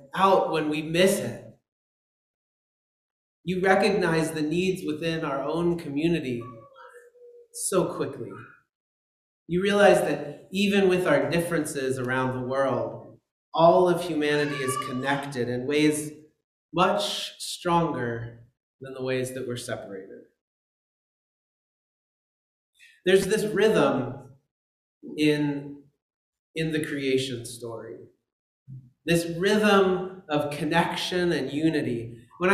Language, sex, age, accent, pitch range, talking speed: English, male, 30-49, American, 140-190 Hz, 100 wpm